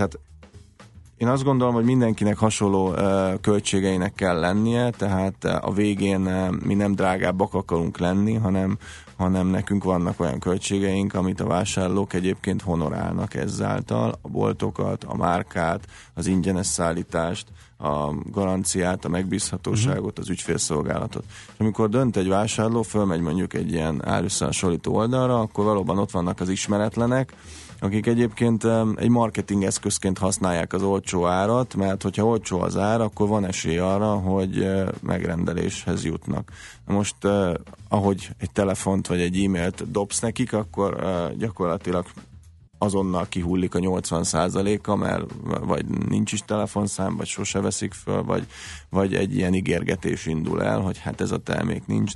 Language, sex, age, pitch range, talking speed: Hungarian, male, 30-49, 90-105 Hz, 140 wpm